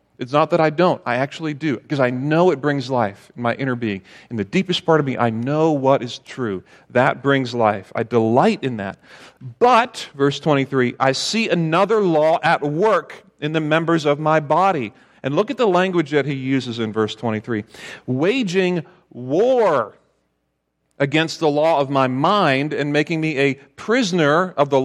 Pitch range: 135-180 Hz